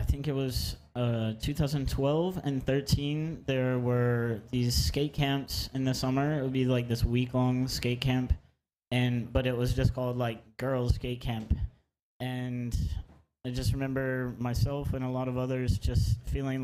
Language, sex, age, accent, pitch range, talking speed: Danish, male, 20-39, American, 115-130 Hz, 165 wpm